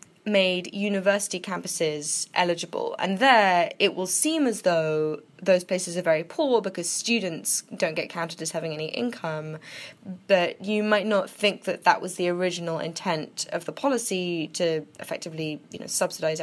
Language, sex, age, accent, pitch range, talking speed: English, female, 10-29, British, 175-240 Hz, 160 wpm